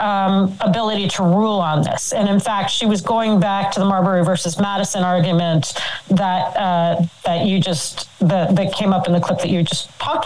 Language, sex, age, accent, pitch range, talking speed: English, female, 40-59, American, 185-220 Hz, 205 wpm